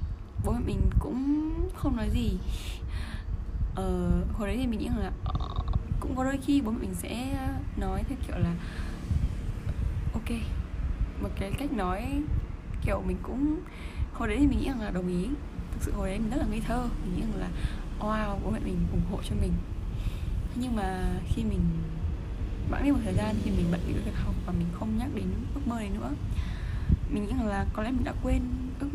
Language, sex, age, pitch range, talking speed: Vietnamese, female, 20-39, 85-100 Hz, 205 wpm